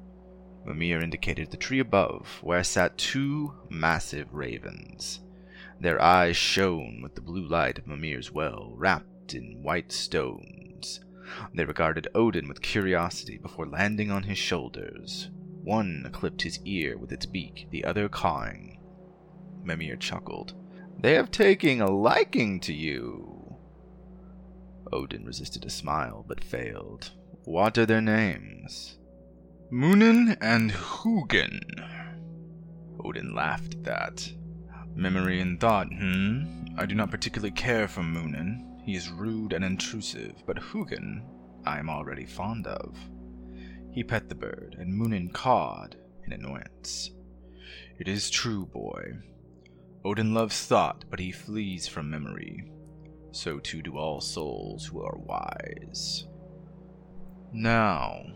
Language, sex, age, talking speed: English, male, 30-49, 125 wpm